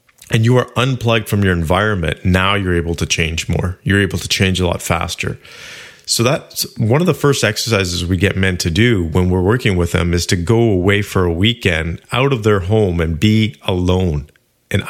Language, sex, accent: English, male, American